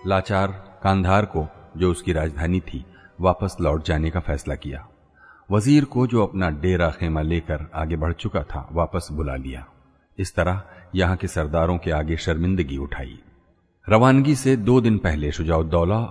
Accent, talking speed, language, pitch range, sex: native, 155 wpm, Hindi, 80-95 Hz, male